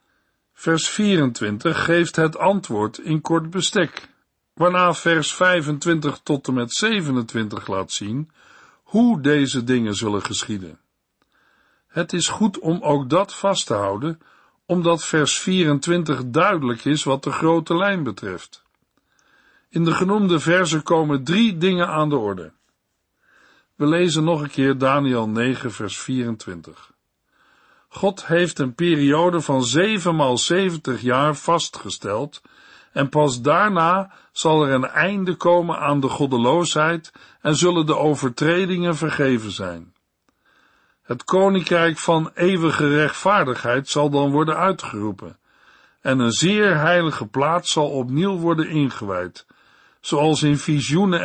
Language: Dutch